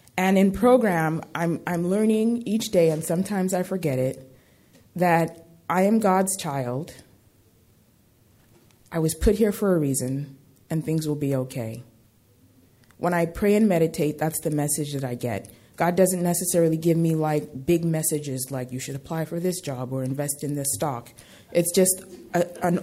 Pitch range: 125-175 Hz